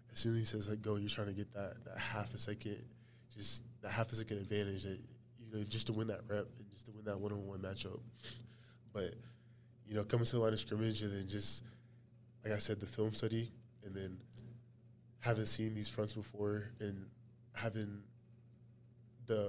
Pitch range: 105-115 Hz